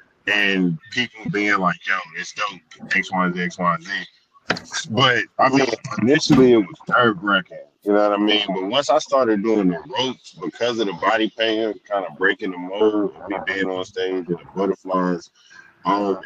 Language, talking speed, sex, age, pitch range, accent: English, 170 wpm, male, 20-39, 95-120 Hz, American